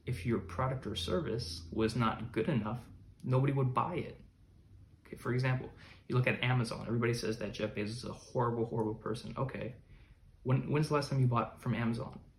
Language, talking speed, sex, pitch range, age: English, 195 wpm, male, 110-125 Hz, 20-39